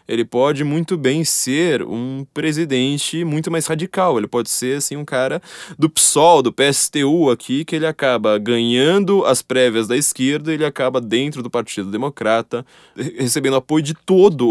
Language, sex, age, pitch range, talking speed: Portuguese, male, 20-39, 125-160 Hz, 165 wpm